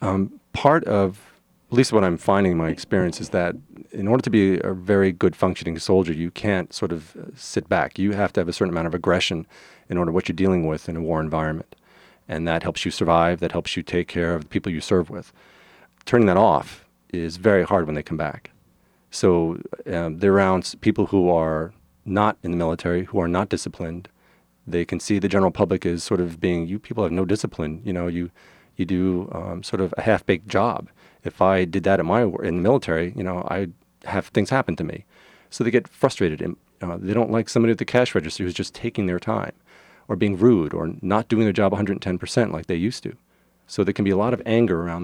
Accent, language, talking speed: American, English, 230 wpm